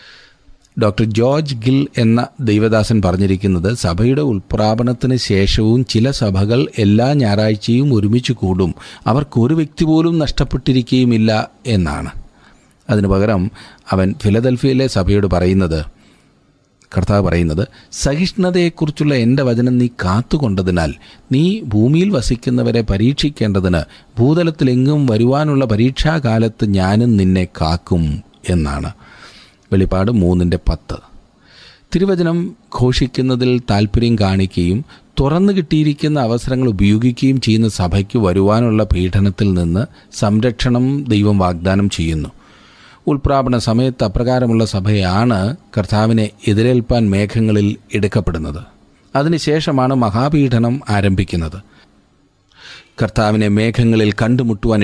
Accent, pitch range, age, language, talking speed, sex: native, 100-130 Hz, 40-59, Malayalam, 85 wpm, male